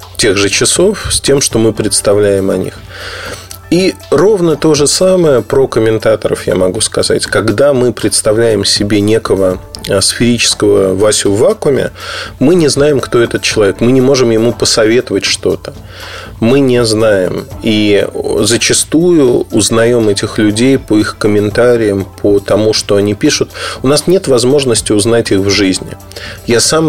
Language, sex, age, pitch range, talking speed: Russian, male, 30-49, 100-120 Hz, 150 wpm